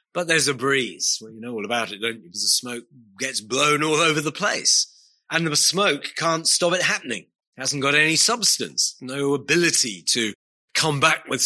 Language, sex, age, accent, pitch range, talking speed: English, male, 40-59, British, 120-155 Hz, 205 wpm